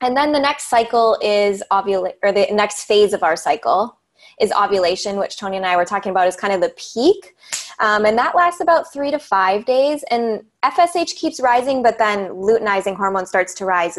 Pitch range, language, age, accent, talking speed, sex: 195-235 Hz, English, 20-39, American, 205 wpm, female